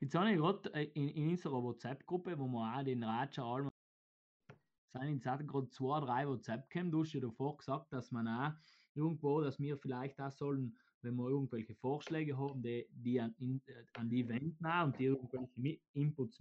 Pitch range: 125-155 Hz